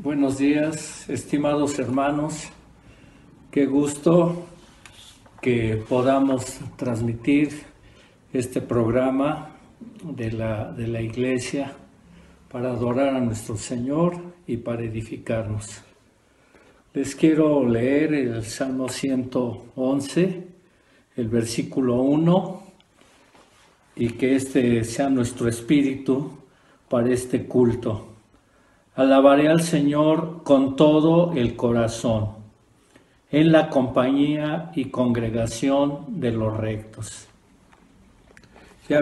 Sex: male